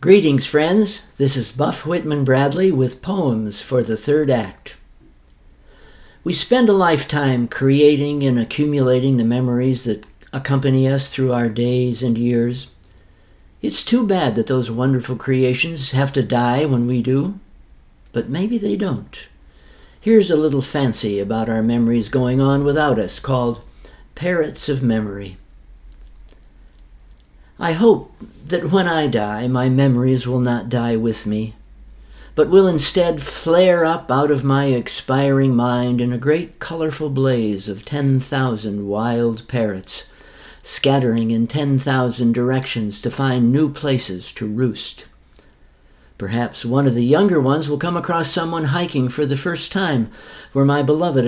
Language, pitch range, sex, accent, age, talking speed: English, 115-145 Hz, male, American, 60-79, 145 wpm